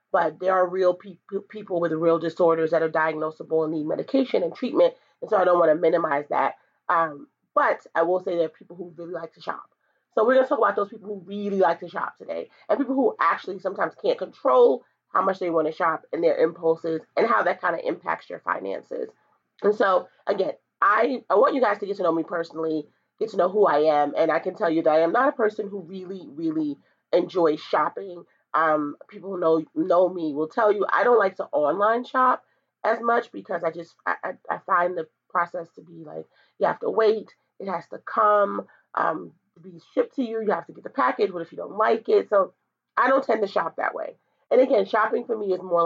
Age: 30-49